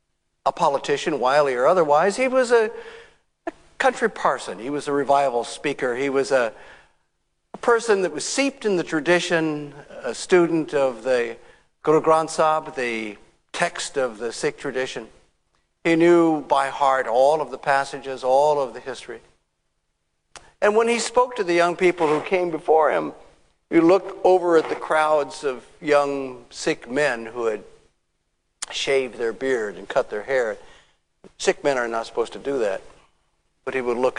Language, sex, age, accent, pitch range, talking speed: English, male, 50-69, American, 140-200 Hz, 160 wpm